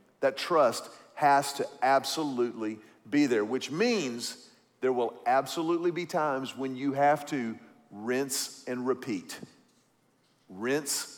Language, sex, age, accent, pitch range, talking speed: English, male, 40-59, American, 135-205 Hz, 120 wpm